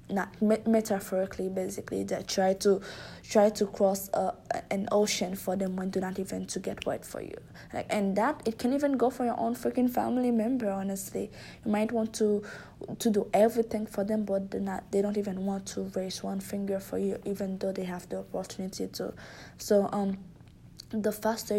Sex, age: female, 20-39